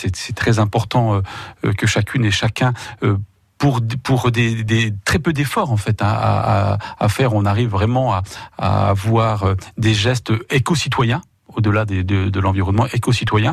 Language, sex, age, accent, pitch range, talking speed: French, male, 40-59, French, 110-135 Hz, 150 wpm